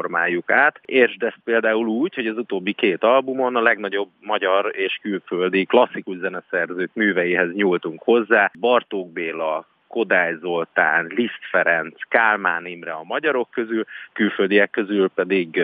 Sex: male